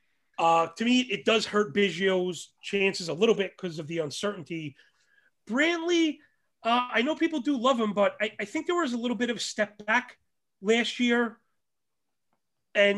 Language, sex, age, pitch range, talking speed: English, male, 30-49, 190-225 Hz, 175 wpm